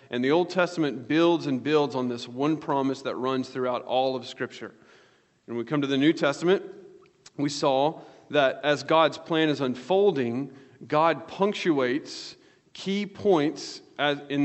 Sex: male